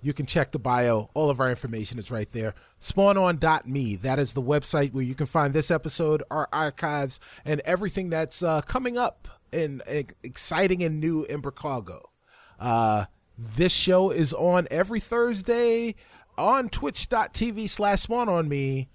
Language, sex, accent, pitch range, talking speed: English, male, American, 120-170 Hz, 150 wpm